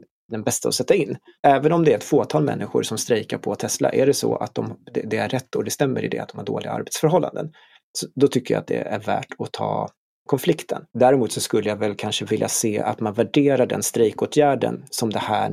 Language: Swedish